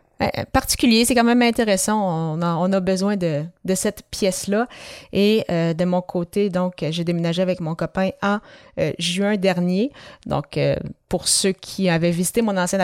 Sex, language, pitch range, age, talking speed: female, French, 175-205 Hz, 30-49, 180 wpm